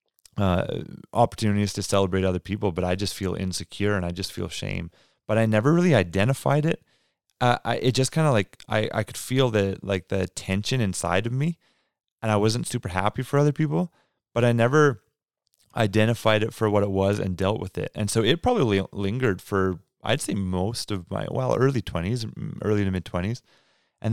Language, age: English, 30-49